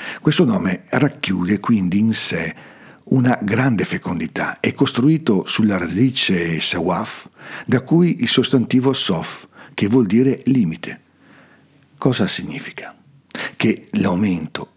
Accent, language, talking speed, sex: native, Italian, 110 wpm, male